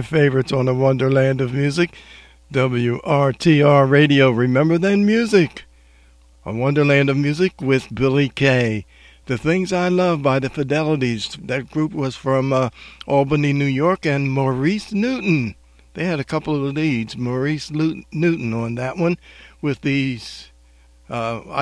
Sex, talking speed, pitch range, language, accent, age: male, 140 wpm, 120-150 Hz, English, American, 60-79